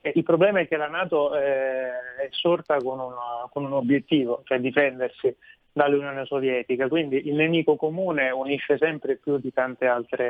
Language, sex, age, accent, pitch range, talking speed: Italian, male, 30-49, native, 130-145 Hz, 155 wpm